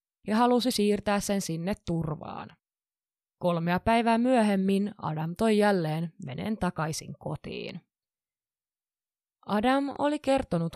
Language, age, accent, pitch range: Finnish, 20-39, native, 170-225 Hz